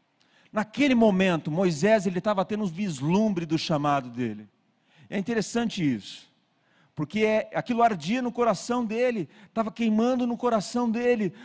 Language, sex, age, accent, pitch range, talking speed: Portuguese, male, 40-59, Brazilian, 150-200 Hz, 125 wpm